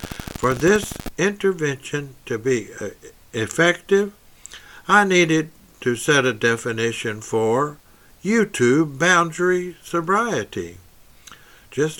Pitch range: 115-165 Hz